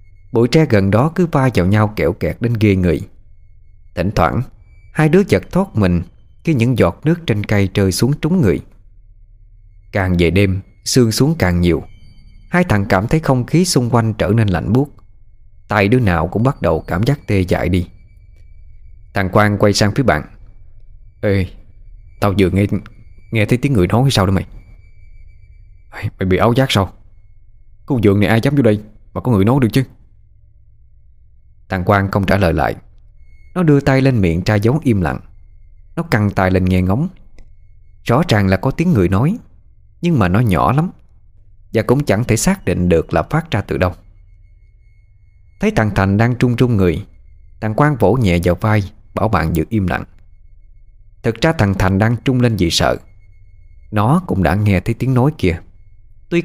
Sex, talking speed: male, 190 wpm